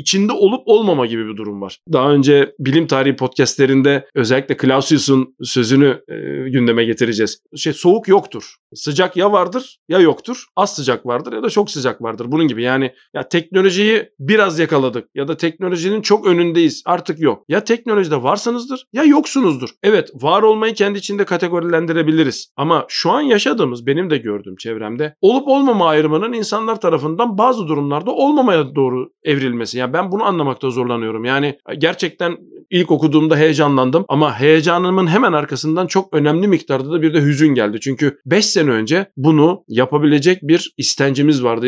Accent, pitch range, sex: native, 135-180 Hz, male